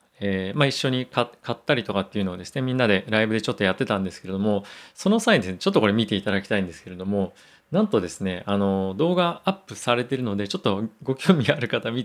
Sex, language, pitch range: male, Japanese, 100-135 Hz